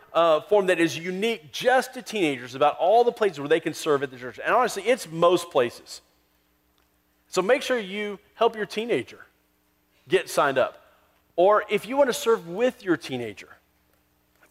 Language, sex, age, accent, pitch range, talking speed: English, male, 40-59, American, 125-210 Hz, 180 wpm